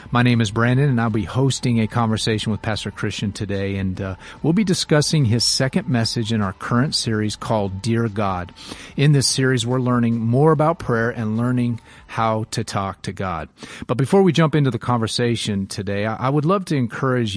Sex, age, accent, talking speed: male, 40-59, American, 195 wpm